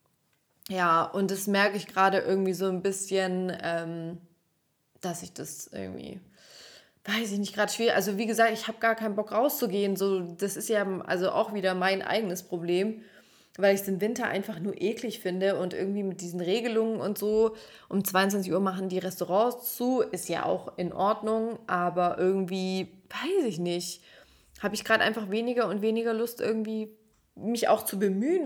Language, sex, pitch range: German, female, 185-220 Hz